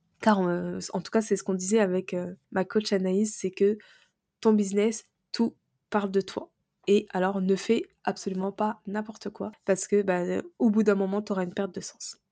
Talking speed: 210 wpm